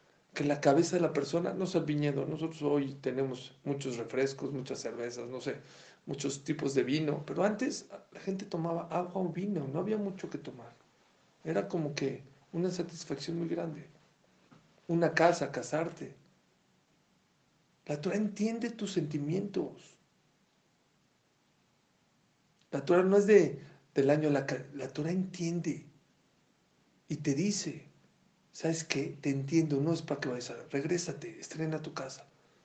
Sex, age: male, 50-69